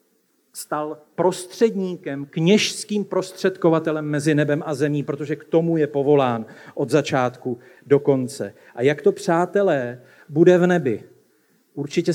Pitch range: 170-235 Hz